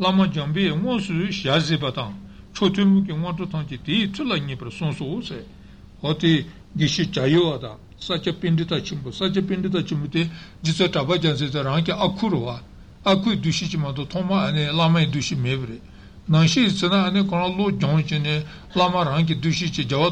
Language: Italian